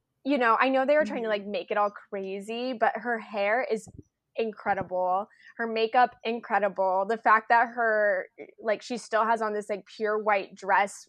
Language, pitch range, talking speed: English, 200-250 Hz, 190 wpm